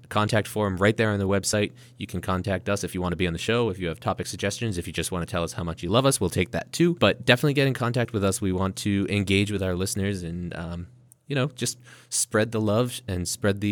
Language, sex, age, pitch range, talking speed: English, male, 20-39, 90-115 Hz, 285 wpm